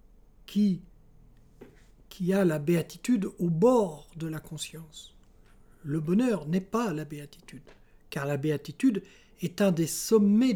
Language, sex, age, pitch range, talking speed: French, male, 60-79, 145-200 Hz, 130 wpm